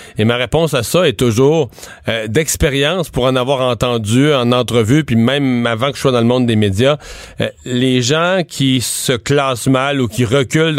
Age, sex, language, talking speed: 40-59, male, French, 200 wpm